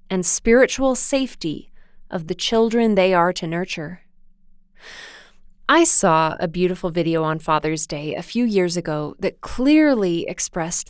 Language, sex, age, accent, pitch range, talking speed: English, female, 20-39, American, 175-220 Hz, 140 wpm